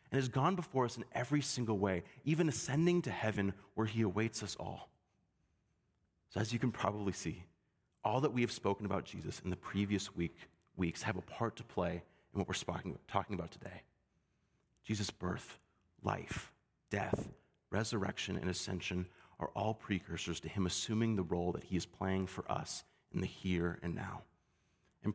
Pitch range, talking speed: 90-110 Hz, 175 wpm